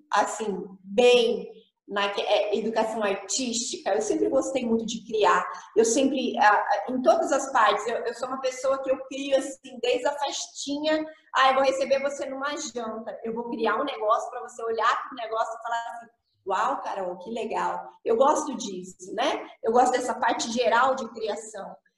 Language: Portuguese